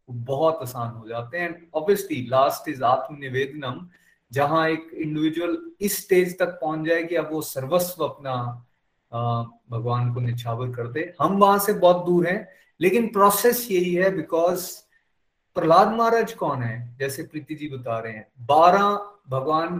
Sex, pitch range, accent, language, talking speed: male, 130-190 Hz, native, Hindi, 140 wpm